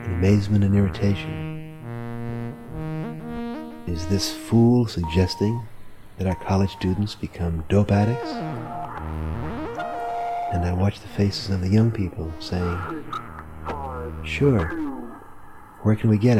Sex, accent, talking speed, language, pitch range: male, American, 110 wpm, English, 90-105 Hz